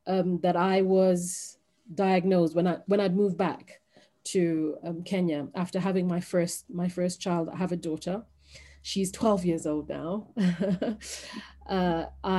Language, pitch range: English, 175-200 Hz